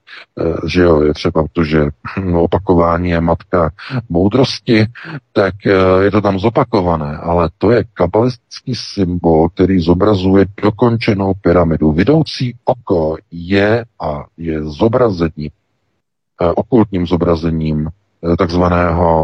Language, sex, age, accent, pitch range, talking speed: Czech, male, 50-69, native, 80-95 Hz, 105 wpm